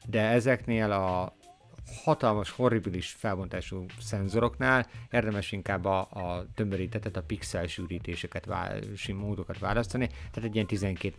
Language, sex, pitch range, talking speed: Hungarian, male, 90-115 Hz, 115 wpm